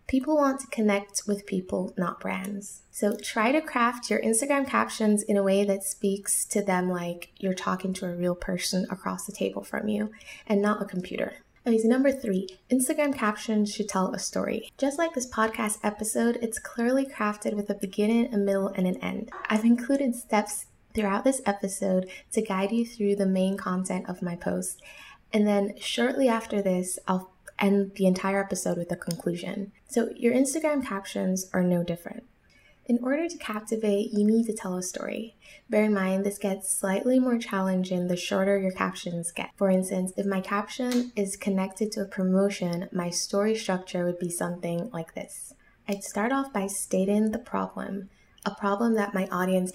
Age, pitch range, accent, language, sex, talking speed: 20-39, 185-220 Hz, American, English, female, 180 wpm